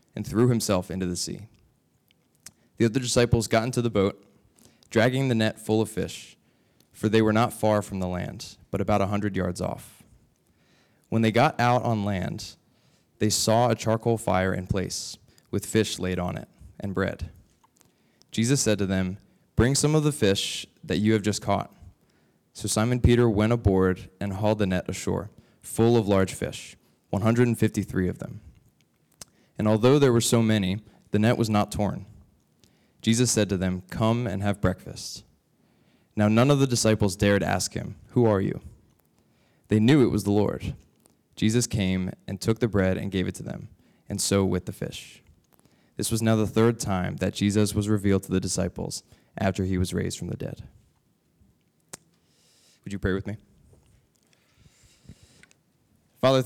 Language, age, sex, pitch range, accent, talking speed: English, 20-39, male, 95-115 Hz, American, 170 wpm